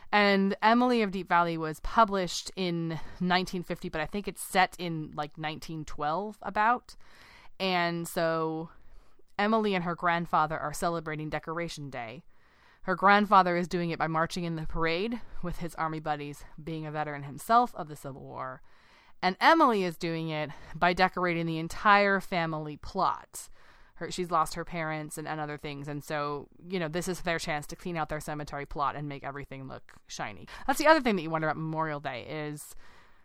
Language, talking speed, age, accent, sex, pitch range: English, 180 wpm, 20-39, American, female, 150-185 Hz